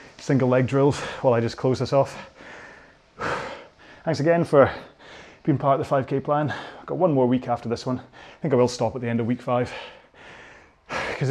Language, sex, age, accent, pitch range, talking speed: English, male, 30-49, British, 115-140 Hz, 200 wpm